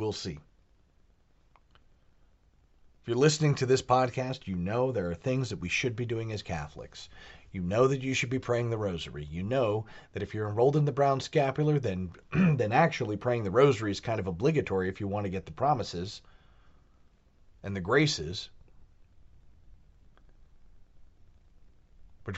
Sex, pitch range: male, 90-130 Hz